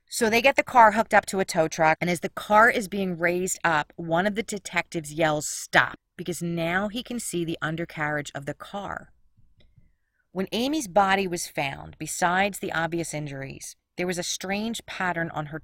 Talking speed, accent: 195 wpm, American